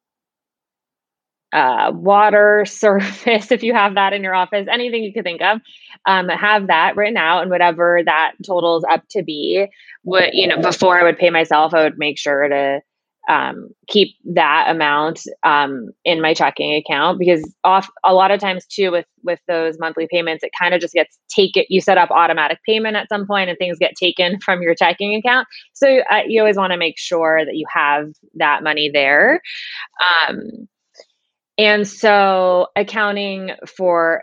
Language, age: English, 20-39